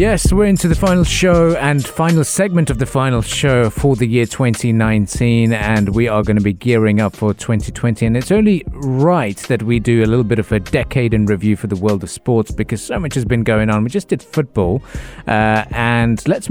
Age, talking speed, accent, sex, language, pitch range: 30-49, 220 wpm, British, male, English, 105-135 Hz